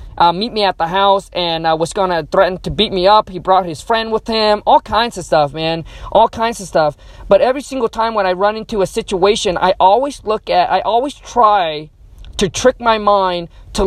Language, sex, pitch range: English, male, 185-230 Hz